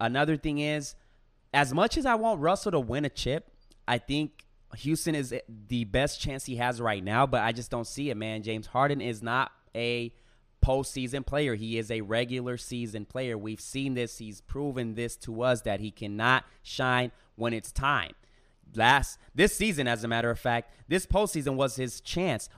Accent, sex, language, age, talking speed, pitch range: American, male, English, 20-39, 190 wpm, 120-150 Hz